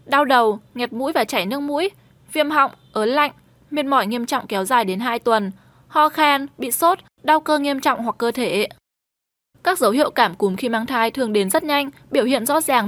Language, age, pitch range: Vietnamese, 10-29, 220-300 Hz